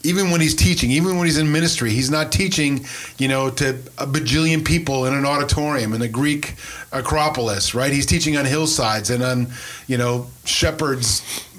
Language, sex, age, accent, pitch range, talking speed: English, male, 30-49, American, 125-155 Hz, 180 wpm